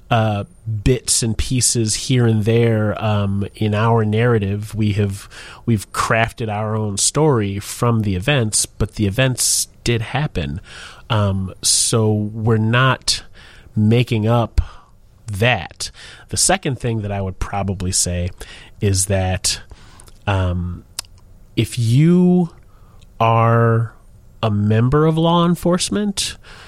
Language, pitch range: English, 100-115 Hz